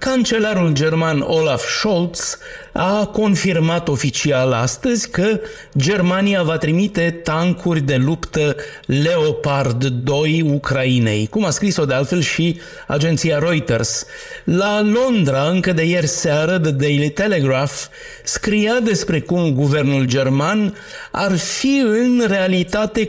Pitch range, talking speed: 140-195 Hz, 115 wpm